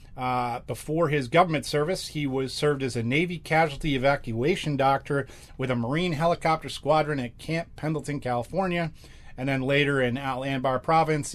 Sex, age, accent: male, 40-59, American